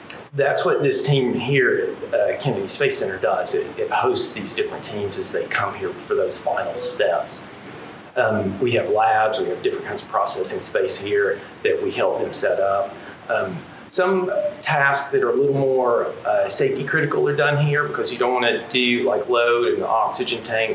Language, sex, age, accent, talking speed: English, male, 40-59, American, 195 wpm